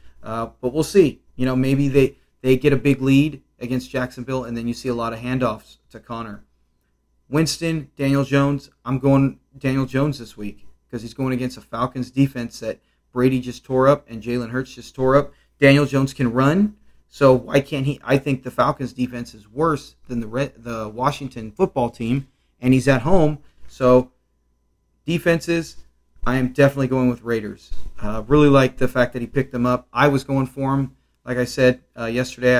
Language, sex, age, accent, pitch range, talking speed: English, male, 30-49, American, 125-140 Hz, 195 wpm